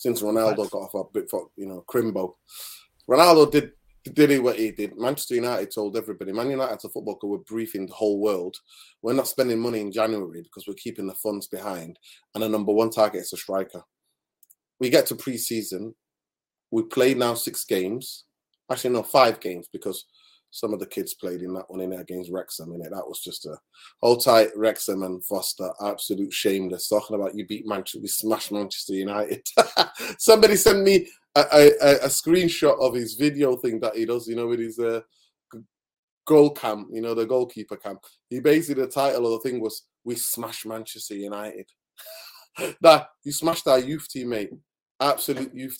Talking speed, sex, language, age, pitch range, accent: 195 wpm, male, English, 20-39, 105-135 Hz, British